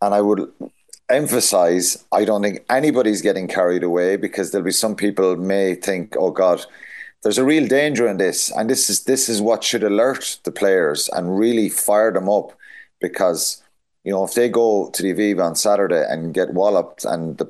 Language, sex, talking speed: English, male, 195 wpm